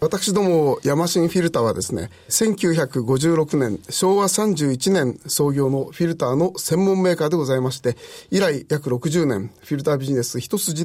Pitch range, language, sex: 135-185 Hz, Japanese, male